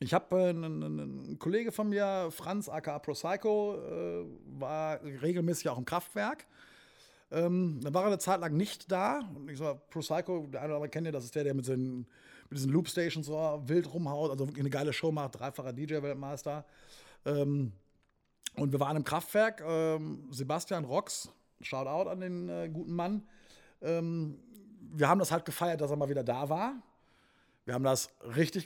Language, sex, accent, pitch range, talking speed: German, male, German, 145-190 Hz, 180 wpm